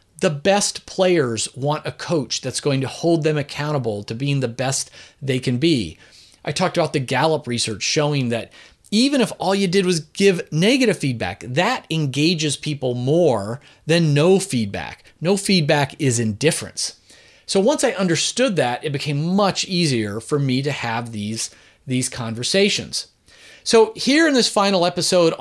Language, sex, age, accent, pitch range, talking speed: English, male, 40-59, American, 125-180 Hz, 165 wpm